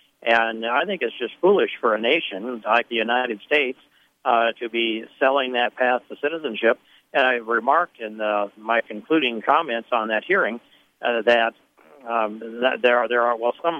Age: 60-79